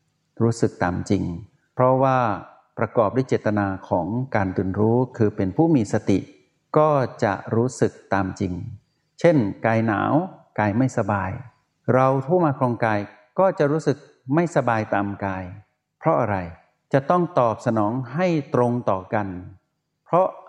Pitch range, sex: 105-145 Hz, male